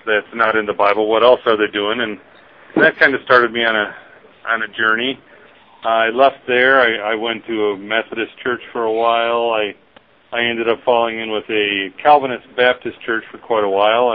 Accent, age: American, 40-59